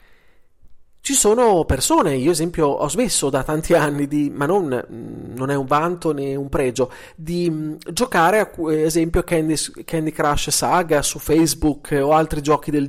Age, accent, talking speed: 30-49, native, 165 wpm